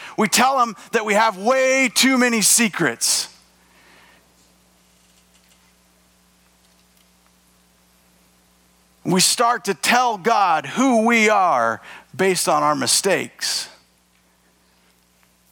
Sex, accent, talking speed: male, American, 85 wpm